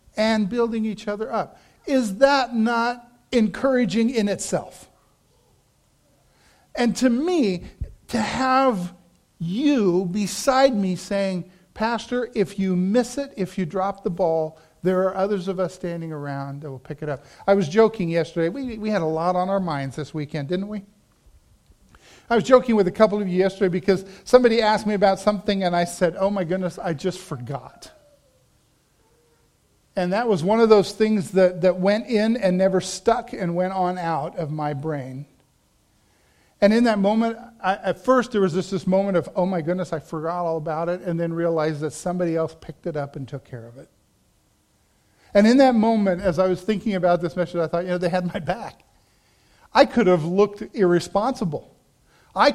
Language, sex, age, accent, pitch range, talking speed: English, male, 50-69, American, 175-220 Hz, 185 wpm